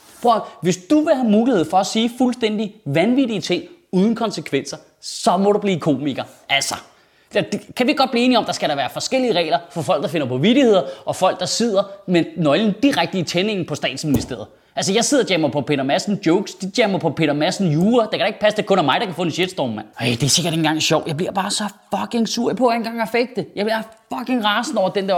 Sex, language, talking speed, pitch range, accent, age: male, Danish, 250 wpm, 165-235 Hz, native, 20-39